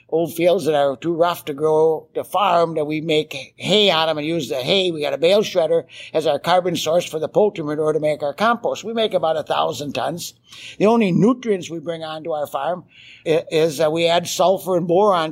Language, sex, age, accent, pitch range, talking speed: English, male, 60-79, American, 150-190 Hz, 225 wpm